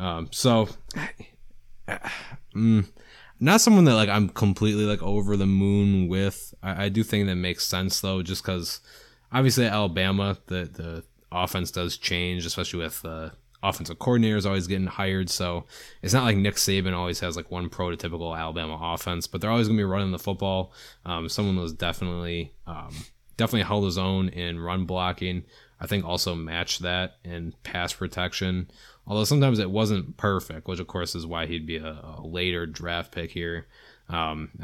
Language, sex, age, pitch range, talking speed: English, male, 20-39, 85-100 Hz, 175 wpm